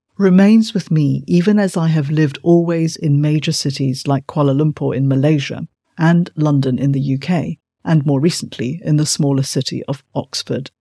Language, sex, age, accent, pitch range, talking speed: English, female, 50-69, British, 145-190 Hz, 170 wpm